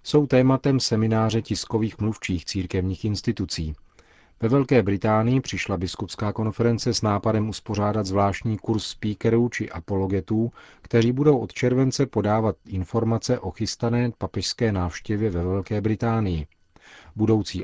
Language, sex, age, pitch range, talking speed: Czech, male, 40-59, 95-115 Hz, 120 wpm